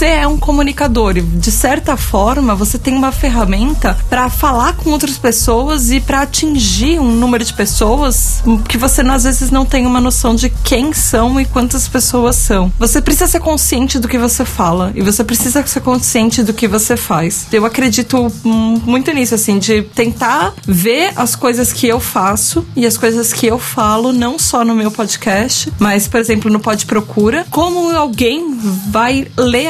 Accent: Brazilian